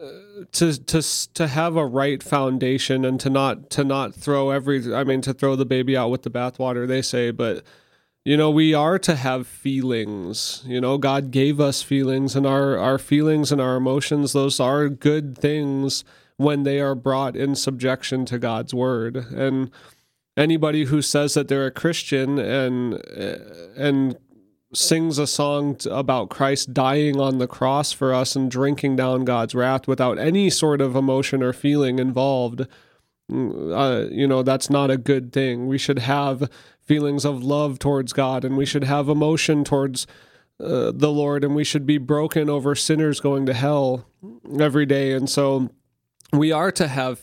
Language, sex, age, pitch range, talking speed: English, male, 30-49, 130-145 Hz, 175 wpm